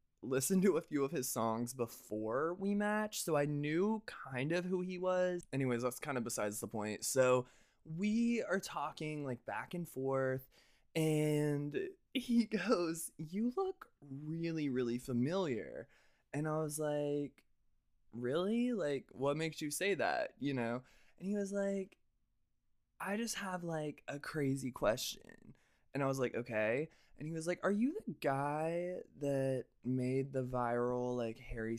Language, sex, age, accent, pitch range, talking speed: English, male, 20-39, American, 130-195 Hz, 160 wpm